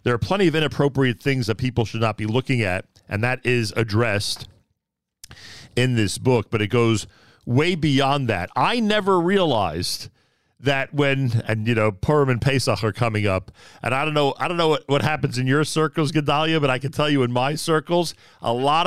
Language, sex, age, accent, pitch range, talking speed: English, male, 40-59, American, 120-160 Hz, 205 wpm